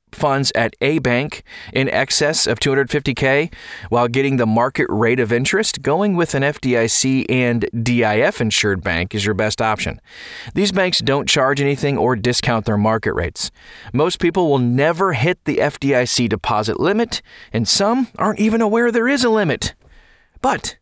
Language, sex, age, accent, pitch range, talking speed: English, male, 30-49, American, 115-160 Hz, 160 wpm